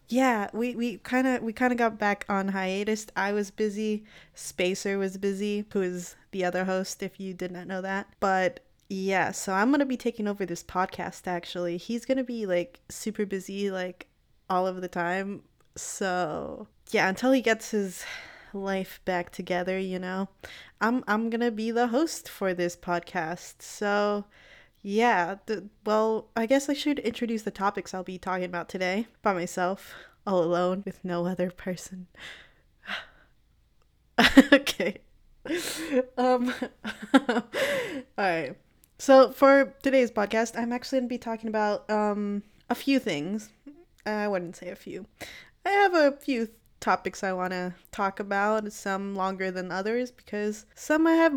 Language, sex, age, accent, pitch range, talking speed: English, female, 20-39, American, 190-250 Hz, 155 wpm